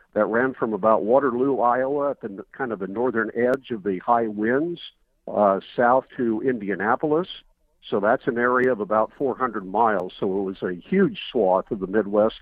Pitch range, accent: 105-130 Hz, American